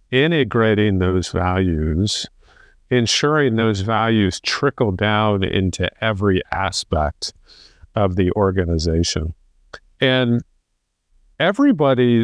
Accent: American